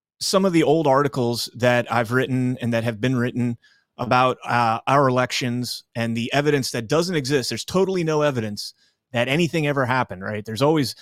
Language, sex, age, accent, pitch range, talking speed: English, male, 30-49, American, 115-155 Hz, 185 wpm